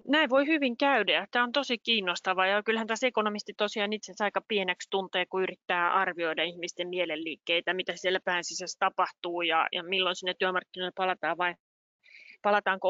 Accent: native